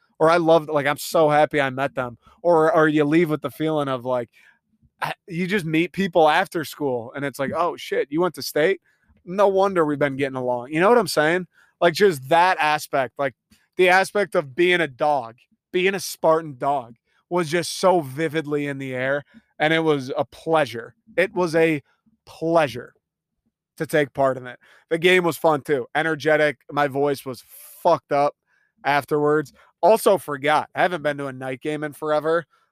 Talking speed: 190 wpm